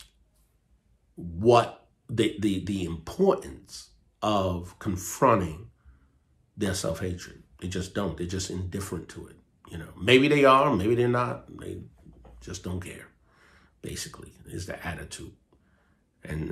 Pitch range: 90-125 Hz